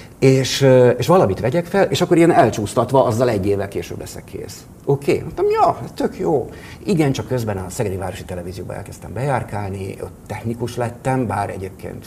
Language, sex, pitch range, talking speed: Hungarian, male, 100-135 Hz, 175 wpm